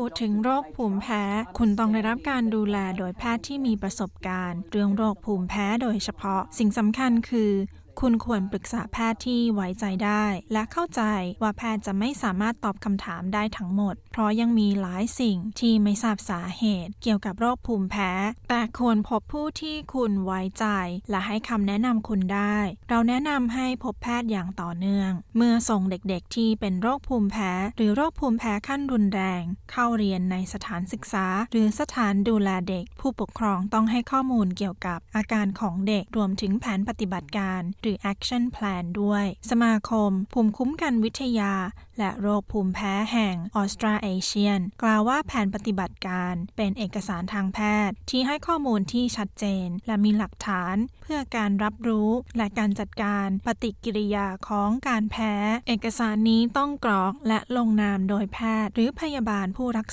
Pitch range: 195-230 Hz